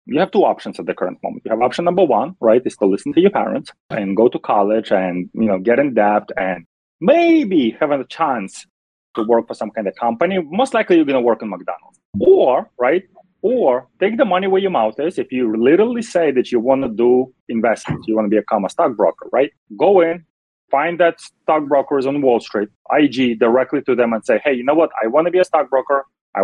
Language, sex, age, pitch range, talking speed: English, male, 30-49, 120-165 Hz, 230 wpm